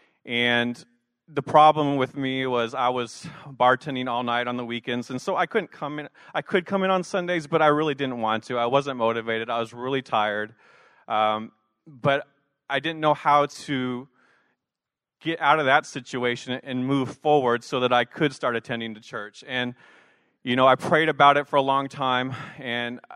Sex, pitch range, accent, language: male, 120-145 Hz, American, English